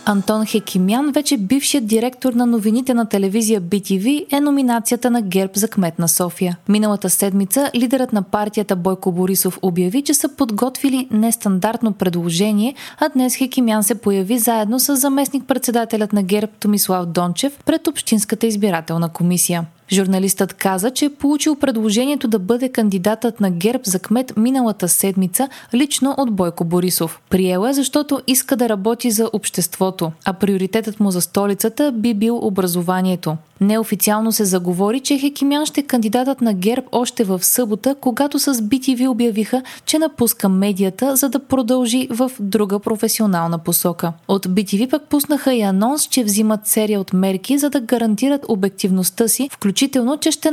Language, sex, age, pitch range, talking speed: Bulgarian, female, 20-39, 195-260 Hz, 150 wpm